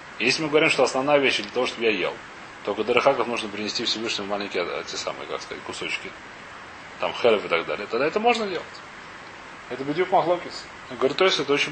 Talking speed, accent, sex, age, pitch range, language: 205 wpm, native, male, 30-49, 125-155 Hz, Russian